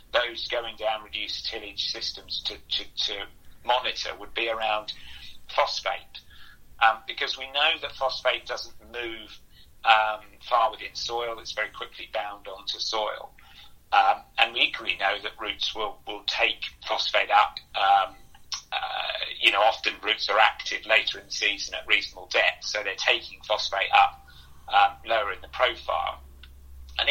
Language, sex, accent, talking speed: English, male, British, 155 wpm